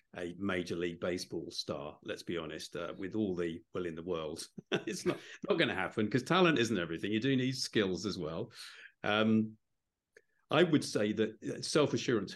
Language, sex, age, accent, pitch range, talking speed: English, male, 50-69, British, 95-120 Hz, 185 wpm